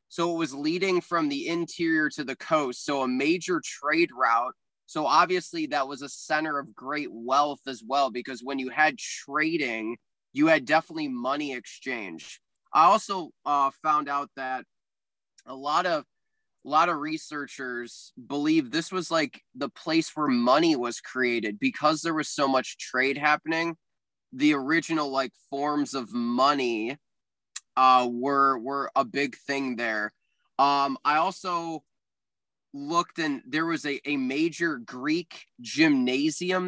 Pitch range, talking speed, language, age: 135-180 Hz, 150 wpm, English, 20-39